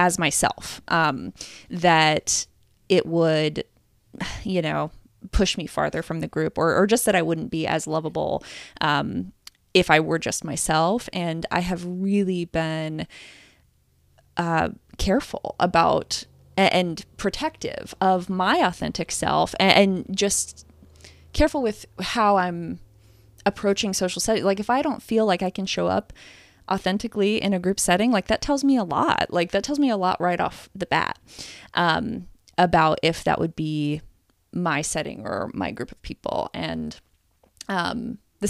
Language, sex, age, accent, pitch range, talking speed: English, female, 20-39, American, 160-200 Hz, 155 wpm